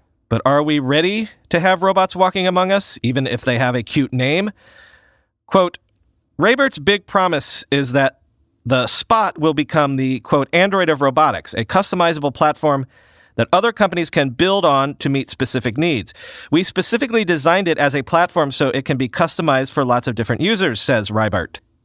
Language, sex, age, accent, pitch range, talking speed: English, male, 40-59, American, 130-175 Hz, 175 wpm